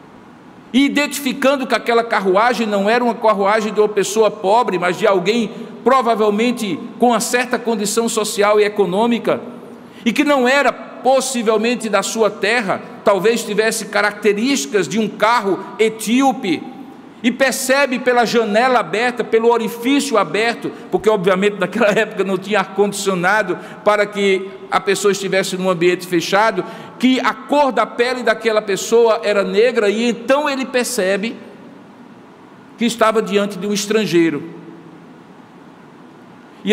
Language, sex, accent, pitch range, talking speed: Portuguese, male, Brazilian, 205-250 Hz, 135 wpm